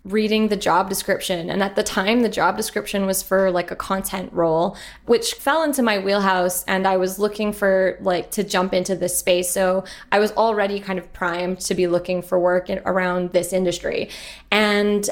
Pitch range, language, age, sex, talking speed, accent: 185-215 Hz, English, 20-39, female, 195 wpm, American